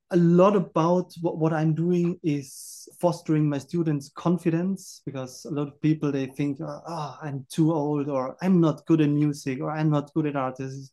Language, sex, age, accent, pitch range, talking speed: English, male, 30-49, German, 135-160 Hz, 200 wpm